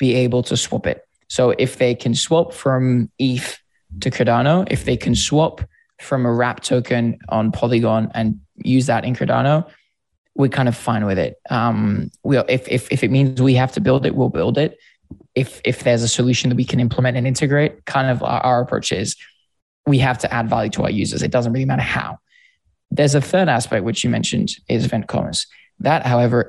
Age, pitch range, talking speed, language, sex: 20-39, 120-135 Hz, 210 wpm, English, male